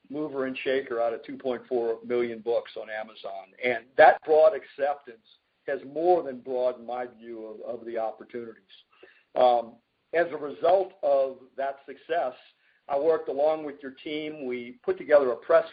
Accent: American